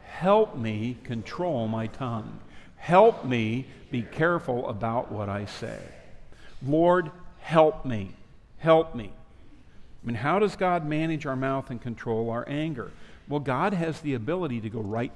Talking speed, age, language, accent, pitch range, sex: 150 wpm, 50-69, English, American, 120-170 Hz, male